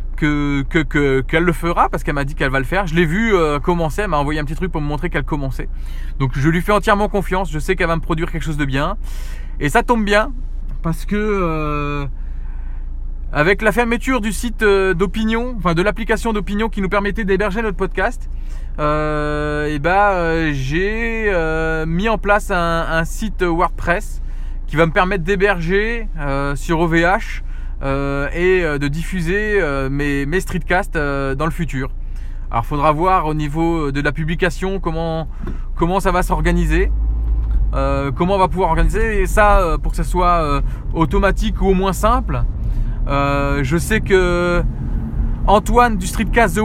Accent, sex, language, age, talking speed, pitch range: French, male, French, 20-39, 185 wpm, 140-195 Hz